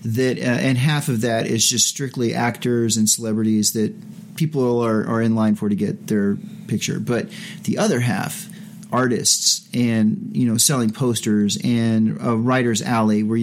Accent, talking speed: American, 170 wpm